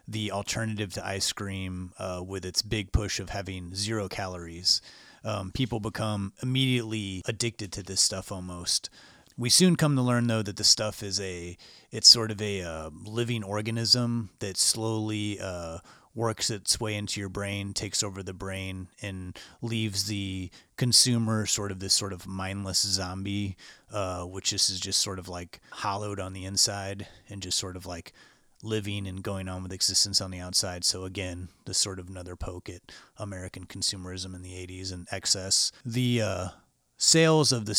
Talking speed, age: 175 wpm, 30-49